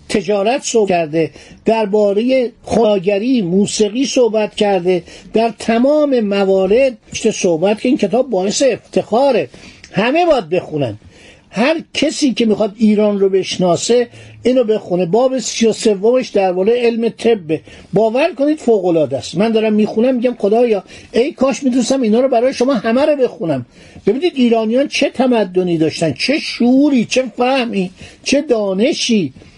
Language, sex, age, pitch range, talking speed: Persian, male, 50-69, 190-245 Hz, 135 wpm